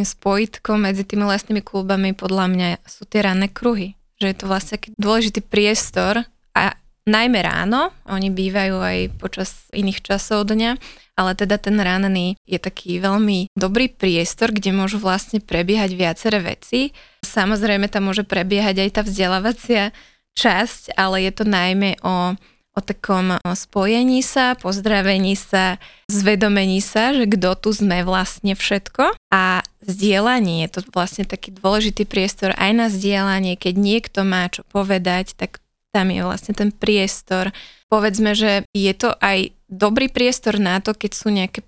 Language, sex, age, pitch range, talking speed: Slovak, female, 20-39, 190-215 Hz, 150 wpm